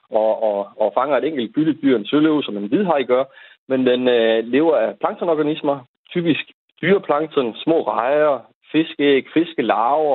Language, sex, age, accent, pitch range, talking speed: Danish, male, 30-49, native, 110-160 Hz, 150 wpm